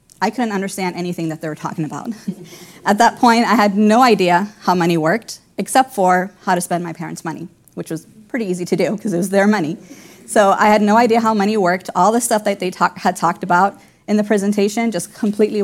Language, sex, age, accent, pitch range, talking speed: English, female, 30-49, American, 180-225 Hz, 225 wpm